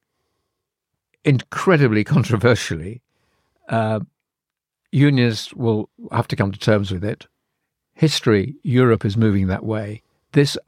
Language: English